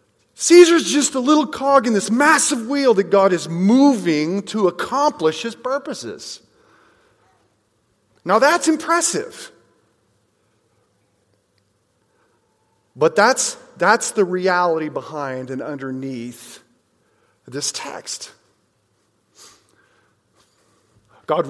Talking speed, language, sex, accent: 85 wpm, English, male, American